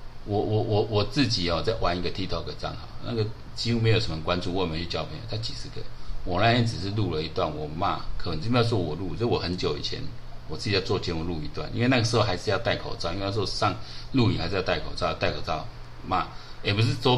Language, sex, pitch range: Chinese, male, 80-115 Hz